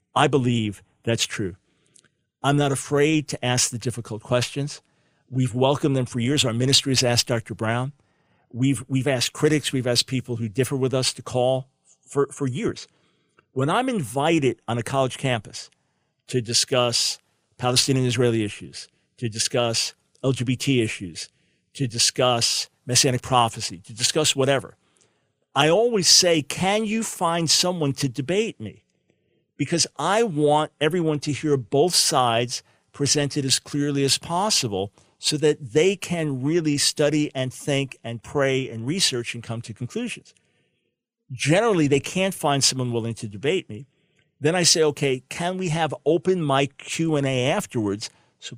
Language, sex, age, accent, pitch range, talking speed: English, male, 50-69, American, 120-150 Hz, 150 wpm